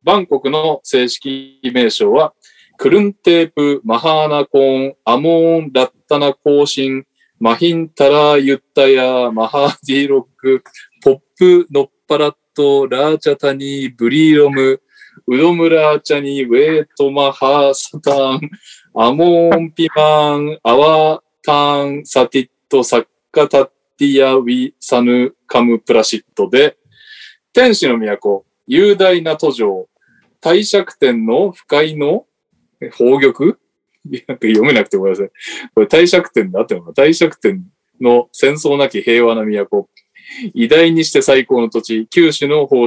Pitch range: 130-170 Hz